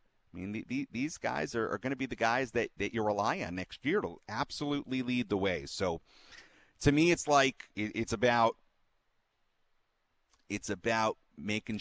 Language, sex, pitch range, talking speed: English, male, 90-130 Hz, 185 wpm